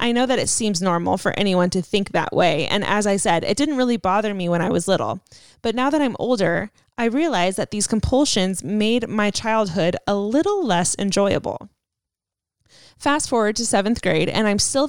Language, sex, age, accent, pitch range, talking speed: English, female, 10-29, American, 185-230 Hz, 200 wpm